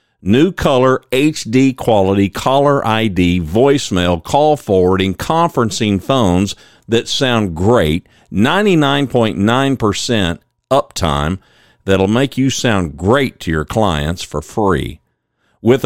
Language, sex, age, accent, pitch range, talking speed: English, male, 50-69, American, 90-130 Hz, 100 wpm